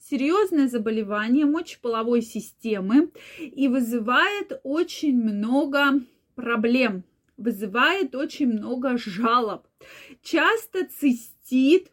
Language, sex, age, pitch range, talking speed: Russian, female, 20-39, 225-285 Hz, 75 wpm